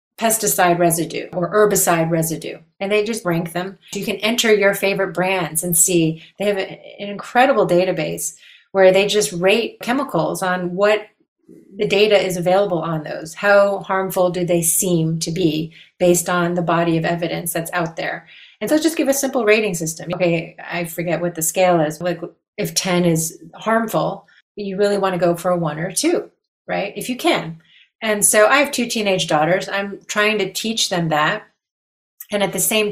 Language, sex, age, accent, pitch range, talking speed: English, female, 30-49, American, 170-205 Hz, 190 wpm